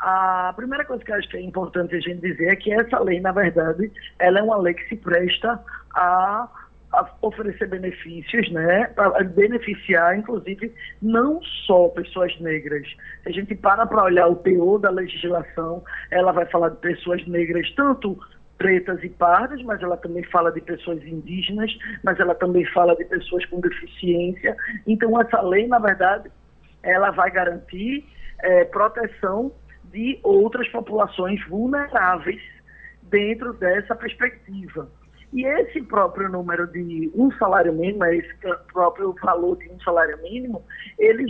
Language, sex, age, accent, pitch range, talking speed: Portuguese, male, 20-39, Brazilian, 180-230 Hz, 155 wpm